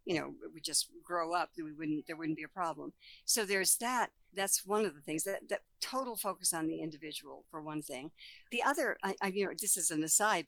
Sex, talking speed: female, 235 wpm